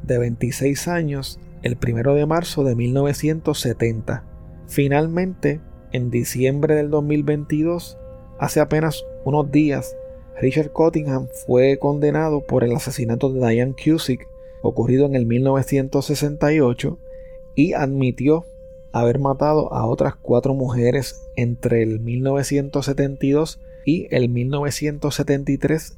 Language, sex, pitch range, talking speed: Spanish, male, 120-150 Hz, 105 wpm